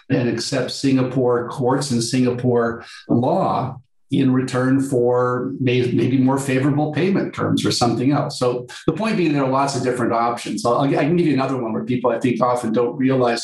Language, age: English, 50-69